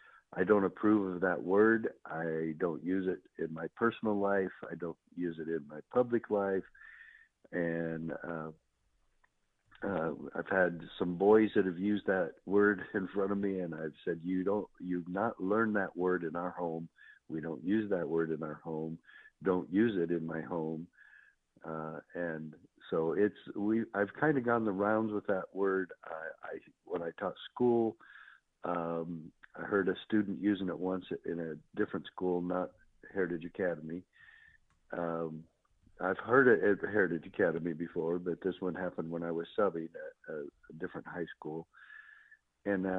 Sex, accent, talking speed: male, American, 170 wpm